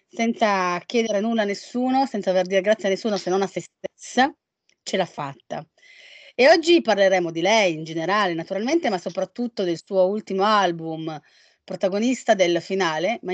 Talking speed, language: 165 wpm, Italian